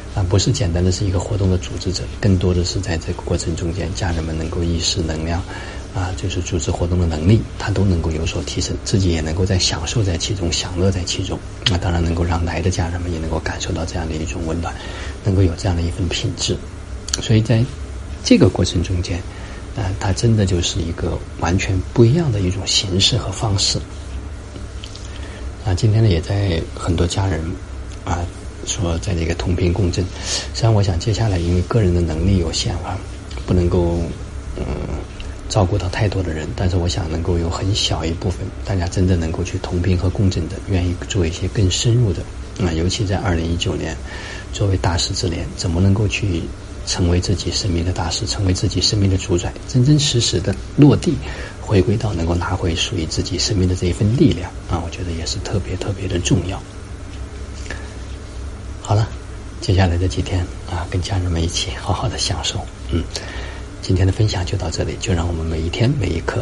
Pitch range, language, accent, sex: 85-100 Hz, Chinese, native, male